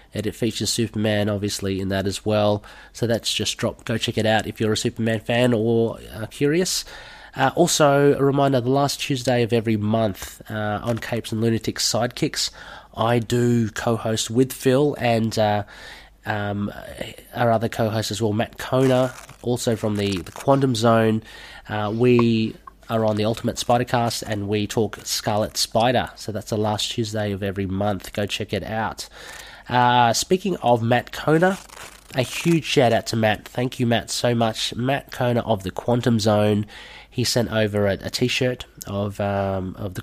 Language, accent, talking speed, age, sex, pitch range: English, Australian, 180 wpm, 20-39, male, 100-120 Hz